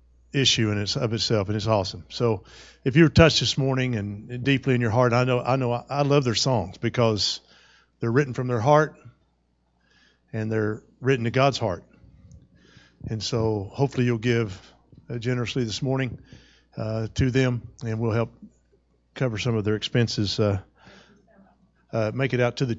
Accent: American